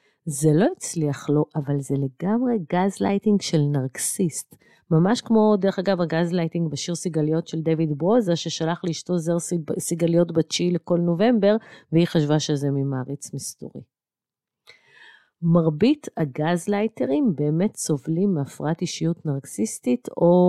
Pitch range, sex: 150-185 Hz, female